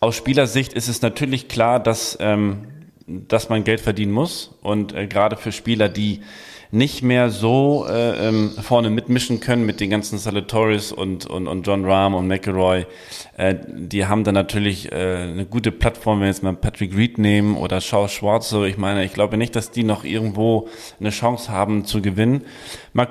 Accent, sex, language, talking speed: German, male, German, 185 wpm